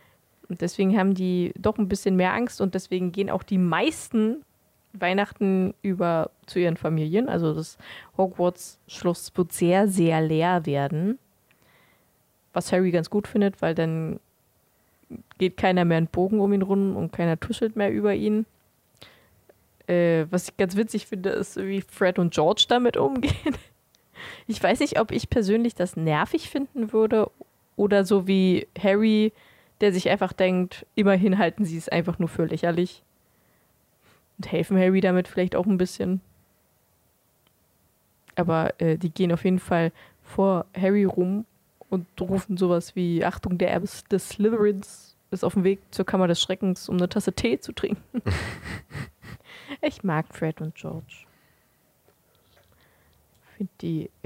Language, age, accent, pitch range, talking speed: German, 20-39, German, 175-200 Hz, 150 wpm